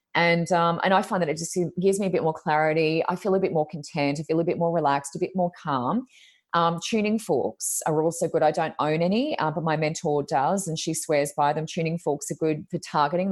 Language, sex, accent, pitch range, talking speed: English, female, Australian, 150-175 Hz, 250 wpm